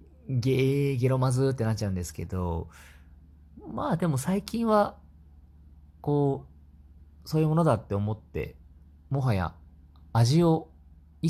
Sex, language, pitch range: male, Japanese, 75-115 Hz